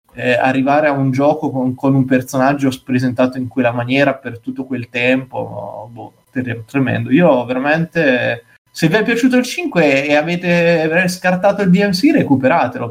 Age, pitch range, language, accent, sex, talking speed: 20-39, 135-170 Hz, Italian, native, male, 150 wpm